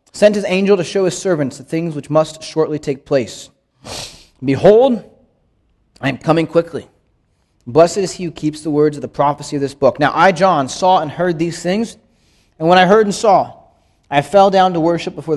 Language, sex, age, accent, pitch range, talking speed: English, male, 30-49, American, 110-165 Hz, 205 wpm